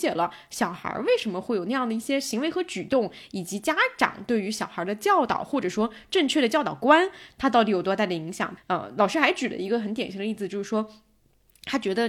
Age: 20-39